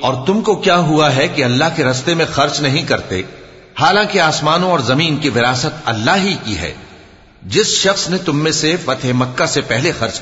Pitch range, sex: 115-160 Hz, male